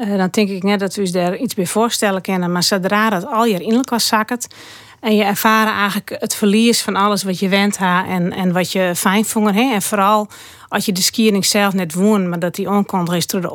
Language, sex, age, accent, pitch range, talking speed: Dutch, female, 40-59, Dutch, 185-225 Hz, 245 wpm